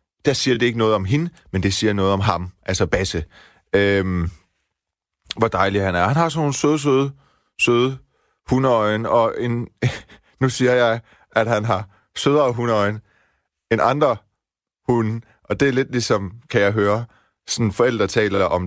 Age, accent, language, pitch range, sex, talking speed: 30-49, native, Danish, 95-130 Hz, male, 165 wpm